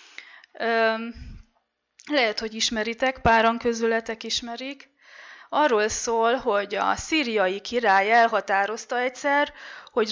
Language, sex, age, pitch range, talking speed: Hungarian, female, 20-39, 205-260 Hz, 90 wpm